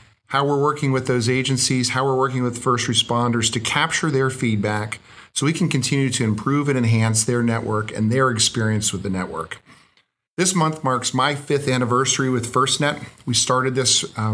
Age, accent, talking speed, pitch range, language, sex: 40-59, American, 185 wpm, 120-135 Hz, English, male